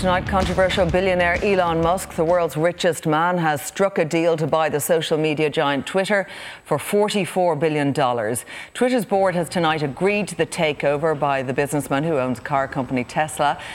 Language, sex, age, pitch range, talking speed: English, female, 40-59, 145-185 Hz, 170 wpm